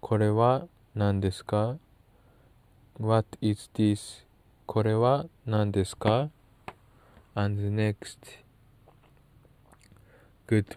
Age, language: 20-39, Japanese